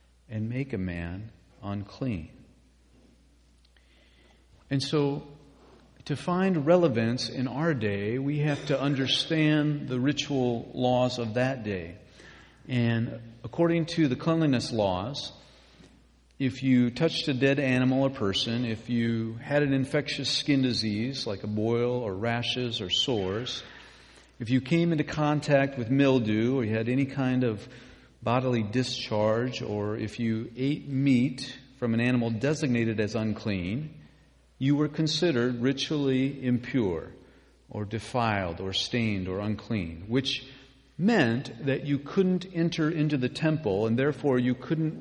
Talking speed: 135 wpm